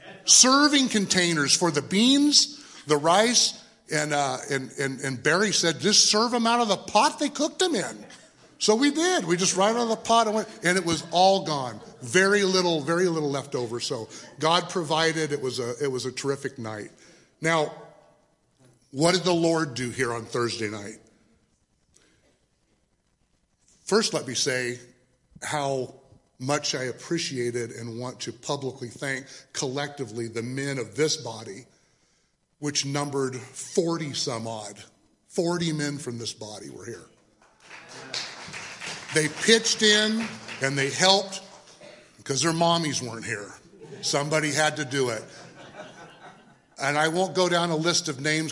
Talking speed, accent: 150 wpm, American